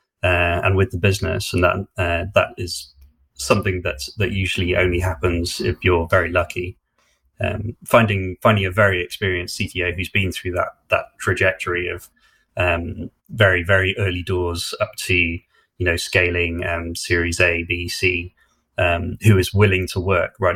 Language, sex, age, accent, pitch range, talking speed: English, male, 20-39, British, 85-95 Hz, 165 wpm